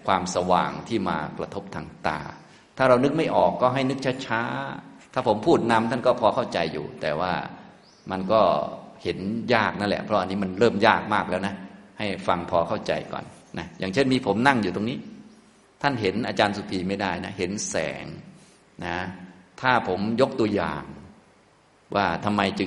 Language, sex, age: Thai, male, 30-49